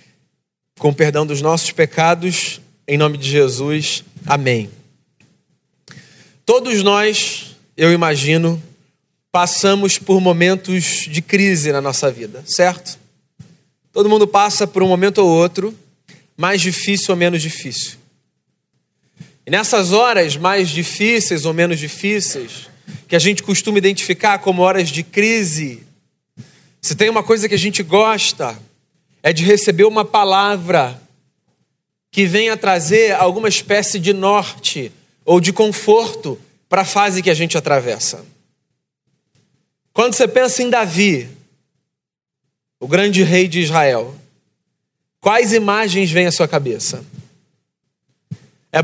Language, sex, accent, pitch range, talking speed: Portuguese, male, Brazilian, 160-210 Hz, 125 wpm